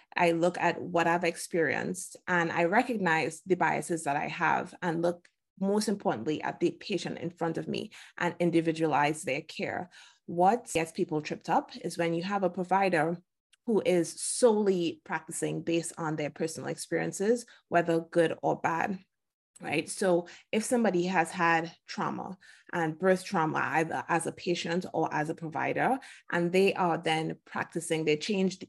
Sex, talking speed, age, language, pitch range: female, 165 wpm, 20-39, English, 160-185 Hz